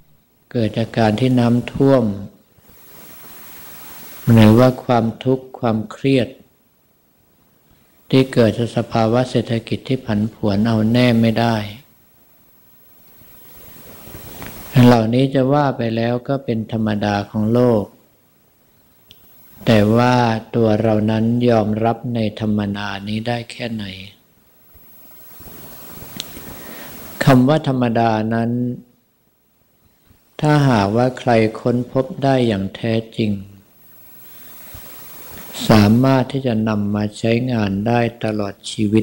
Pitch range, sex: 105-120 Hz, male